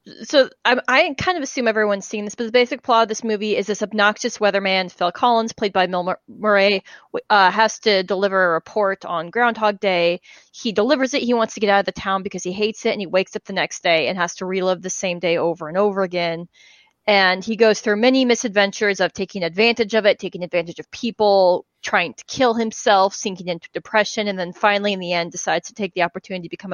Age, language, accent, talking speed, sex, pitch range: 30-49, English, American, 230 wpm, female, 185-240 Hz